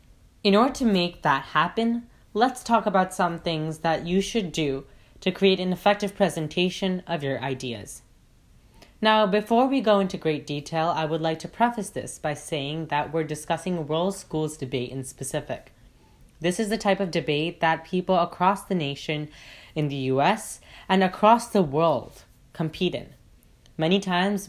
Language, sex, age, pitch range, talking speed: English, female, 10-29, 150-190 Hz, 170 wpm